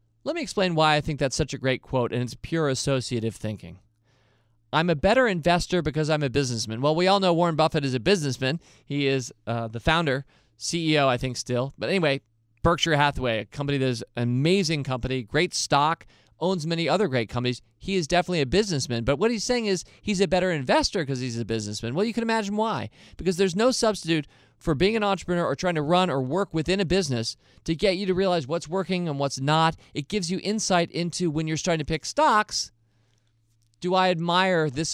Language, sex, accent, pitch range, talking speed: English, male, American, 125-175 Hz, 215 wpm